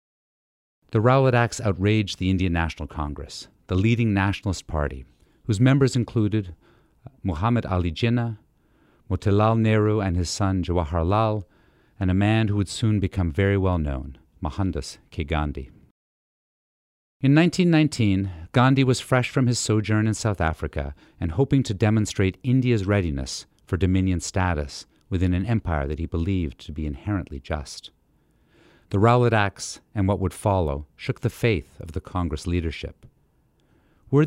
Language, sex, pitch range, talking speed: English, male, 85-115 Hz, 140 wpm